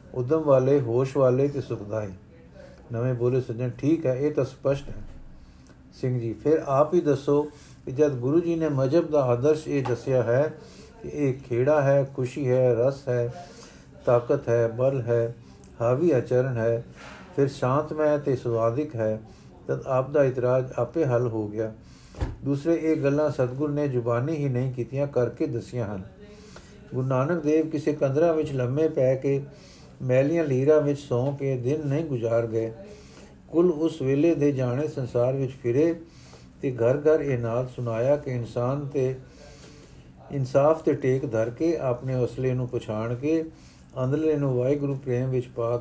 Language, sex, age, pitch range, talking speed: Punjabi, male, 50-69, 120-150 Hz, 160 wpm